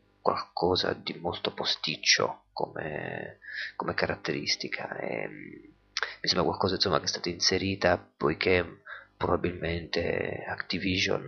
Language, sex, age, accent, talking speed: Italian, male, 30-49, native, 100 wpm